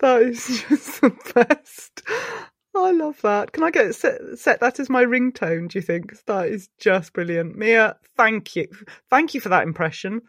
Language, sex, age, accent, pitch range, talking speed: English, female, 30-49, British, 205-320 Hz, 180 wpm